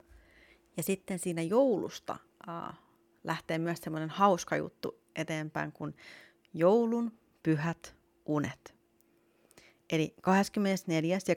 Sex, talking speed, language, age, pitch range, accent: female, 90 wpm, Finnish, 30-49, 155-190 Hz, native